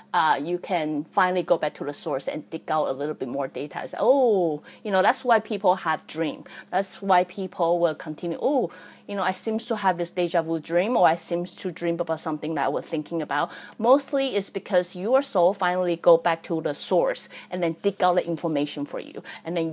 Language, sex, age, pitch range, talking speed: English, female, 30-49, 165-210 Hz, 225 wpm